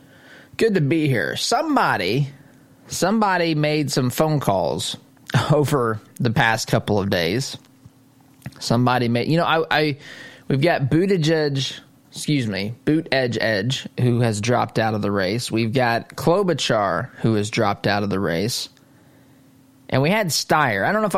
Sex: male